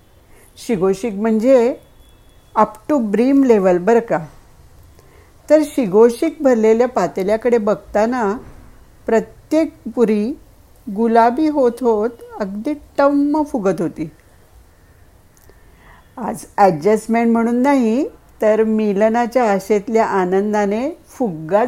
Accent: native